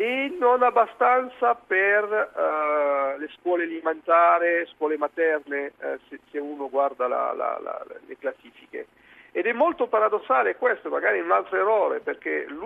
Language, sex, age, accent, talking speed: Italian, male, 50-69, native, 120 wpm